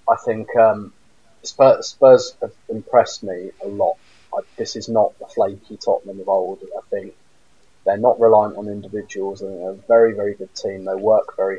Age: 30-49